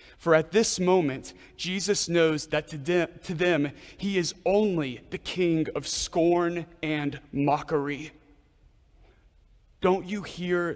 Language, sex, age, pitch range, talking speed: English, male, 30-49, 165-215 Hz, 115 wpm